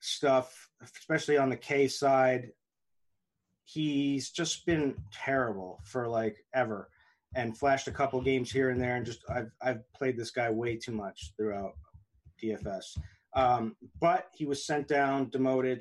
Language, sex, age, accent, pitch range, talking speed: English, male, 30-49, American, 115-135 Hz, 155 wpm